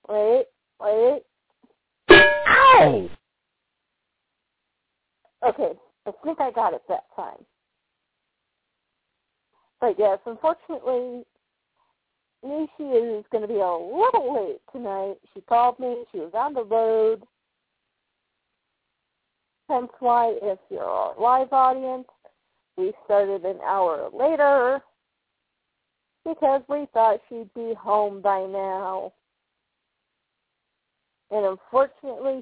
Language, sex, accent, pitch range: English, female, American, 210-290 Hz